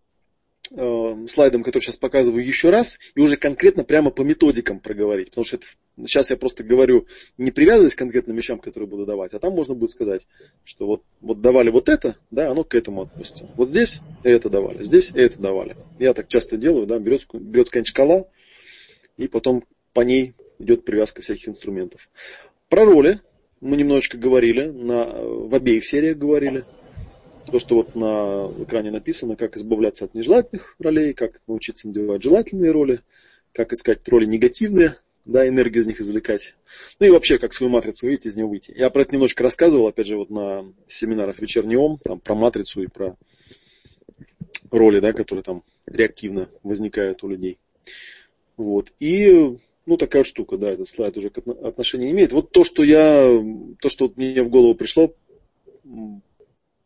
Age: 20-39